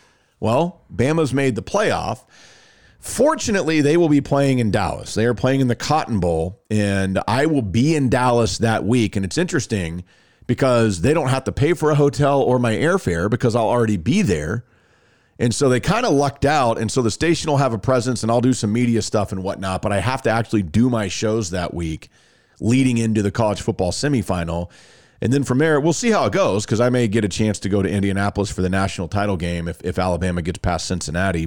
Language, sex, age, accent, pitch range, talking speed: English, male, 40-59, American, 95-125 Hz, 220 wpm